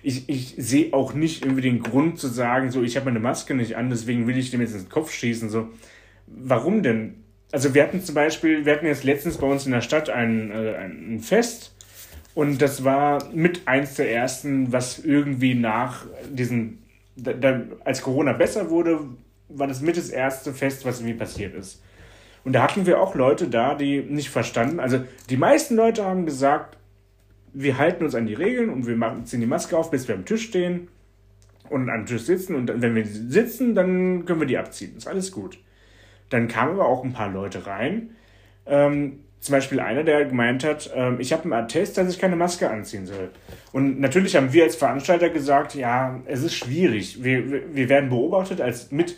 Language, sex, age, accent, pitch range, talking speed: German, male, 30-49, German, 115-150 Hz, 195 wpm